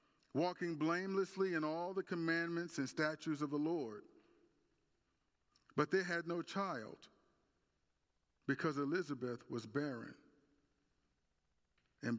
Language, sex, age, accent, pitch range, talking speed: English, male, 50-69, American, 110-170 Hz, 105 wpm